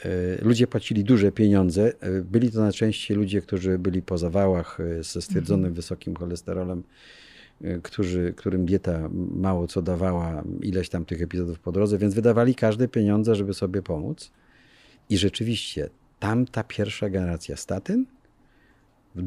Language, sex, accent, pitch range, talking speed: Polish, male, native, 90-115 Hz, 135 wpm